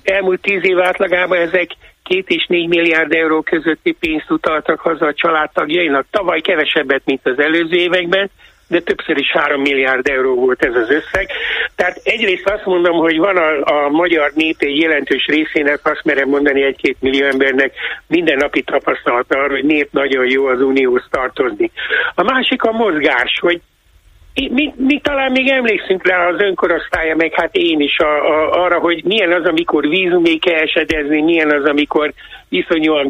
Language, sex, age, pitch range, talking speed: Hungarian, male, 60-79, 145-225 Hz, 170 wpm